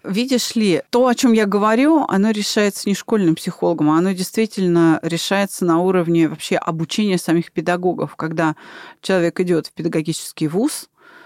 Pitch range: 170-240 Hz